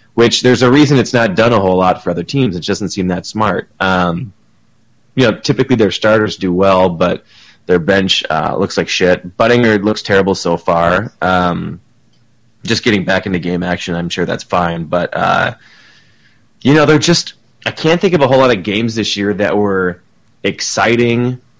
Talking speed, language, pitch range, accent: 190 wpm, English, 90-115 Hz, American